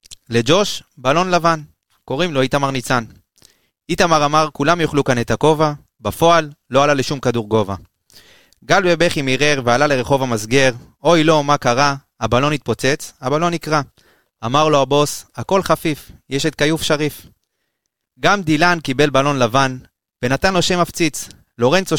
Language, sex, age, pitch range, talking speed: Hebrew, male, 30-49, 125-160 Hz, 145 wpm